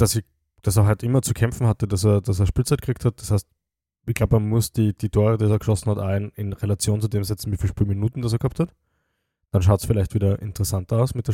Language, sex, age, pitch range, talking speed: German, male, 20-39, 100-120 Hz, 270 wpm